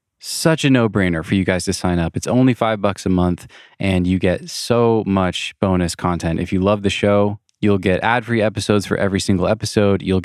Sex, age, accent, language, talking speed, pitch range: male, 20-39, American, English, 210 wpm, 90-110 Hz